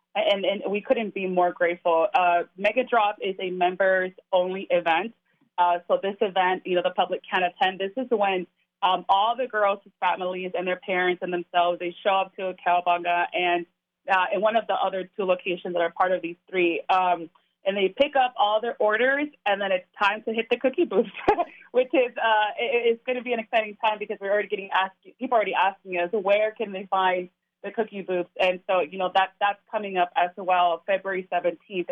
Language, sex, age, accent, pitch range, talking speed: English, female, 30-49, American, 180-215 Hz, 215 wpm